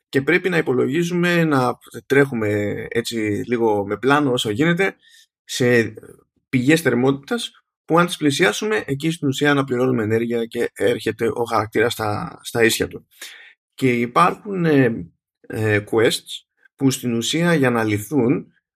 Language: Greek